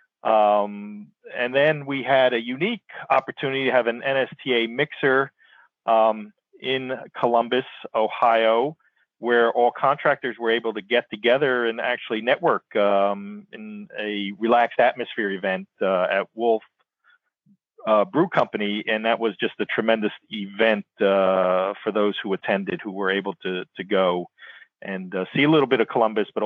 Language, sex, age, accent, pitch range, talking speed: English, male, 40-59, American, 105-125 Hz, 150 wpm